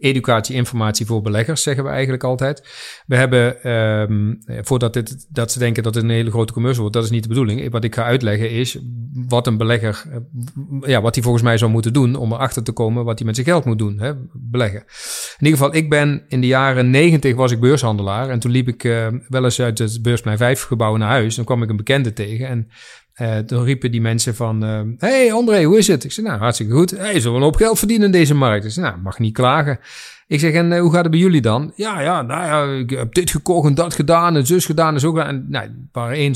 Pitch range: 115-145 Hz